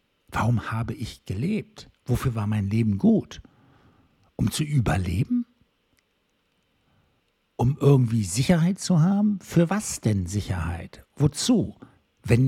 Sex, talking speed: male, 110 wpm